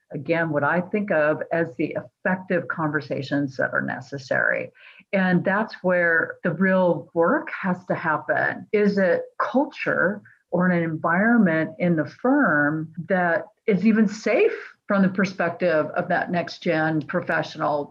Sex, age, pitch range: female, 50-69, 165-195 Hz